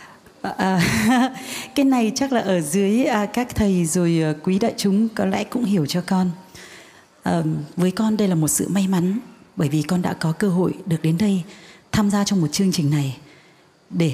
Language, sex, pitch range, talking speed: Vietnamese, female, 160-215 Hz, 185 wpm